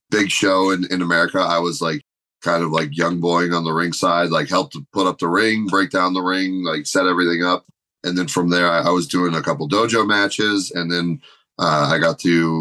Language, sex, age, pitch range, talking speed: English, male, 30-49, 85-95 Hz, 245 wpm